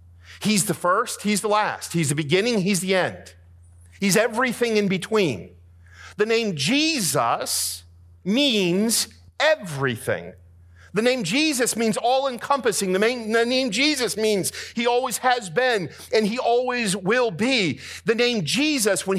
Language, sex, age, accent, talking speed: English, male, 50-69, American, 135 wpm